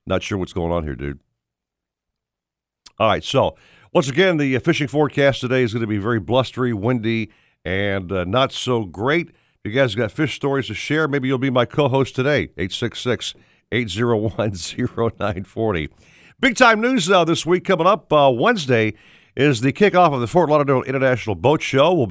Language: English